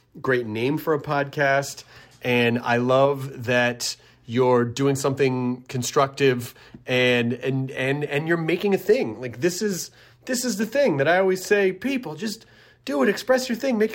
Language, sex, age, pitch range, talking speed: English, male, 30-49, 115-145 Hz, 170 wpm